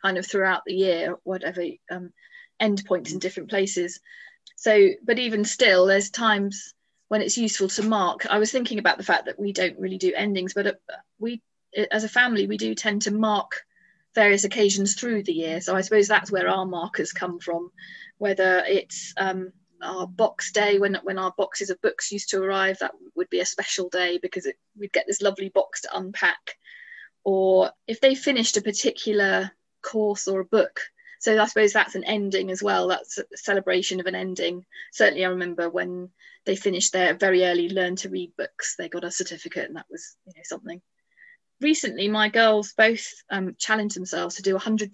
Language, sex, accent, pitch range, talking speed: English, female, British, 185-215 Hz, 195 wpm